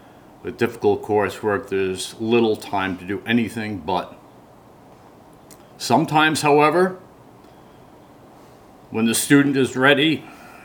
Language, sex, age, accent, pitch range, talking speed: English, male, 50-69, American, 110-145 Hz, 95 wpm